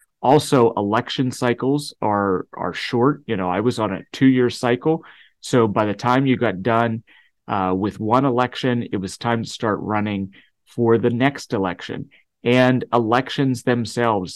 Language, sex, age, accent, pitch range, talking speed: English, male, 30-49, American, 105-125 Hz, 160 wpm